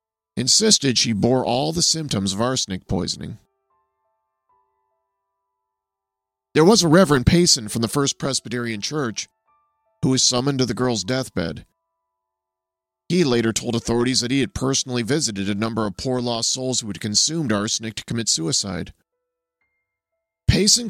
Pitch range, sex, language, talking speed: 105-145 Hz, male, English, 140 wpm